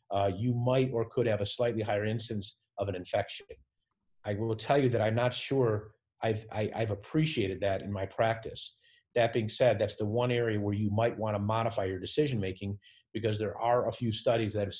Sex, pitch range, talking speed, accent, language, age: male, 100-120 Hz, 210 wpm, American, English, 40-59